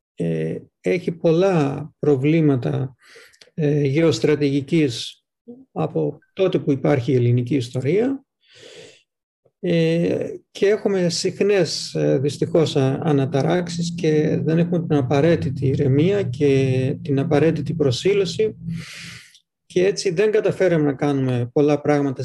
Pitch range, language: 140-175 Hz, Greek